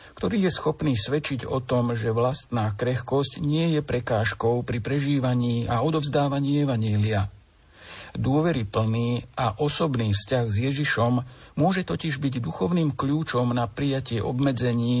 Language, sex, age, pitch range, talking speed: Slovak, male, 50-69, 110-140 Hz, 125 wpm